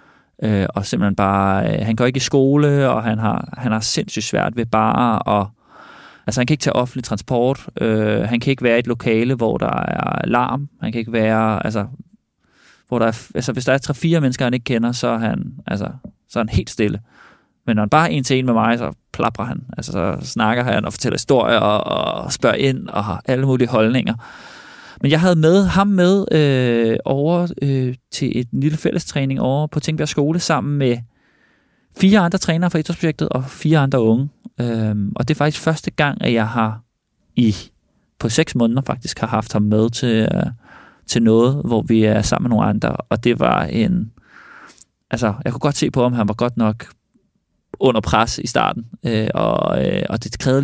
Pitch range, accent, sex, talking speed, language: 110-150 Hz, native, male, 205 wpm, Danish